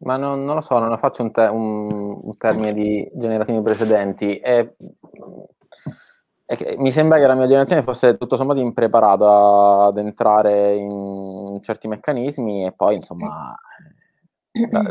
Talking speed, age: 150 wpm, 20-39